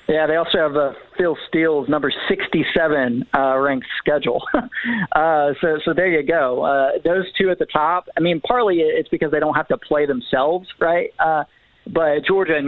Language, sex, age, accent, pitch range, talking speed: English, male, 40-59, American, 140-170 Hz, 190 wpm